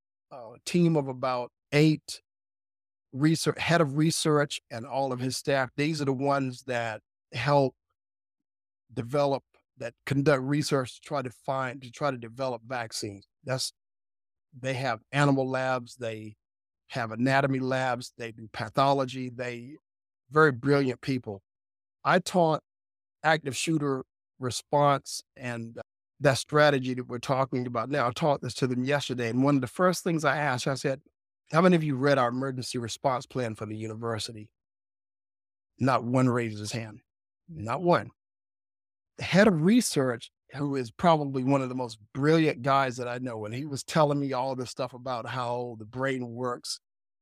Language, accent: English, American